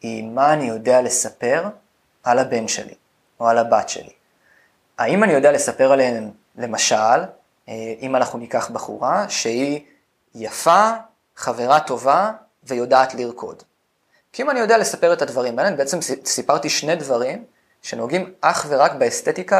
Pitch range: 120-155 Hz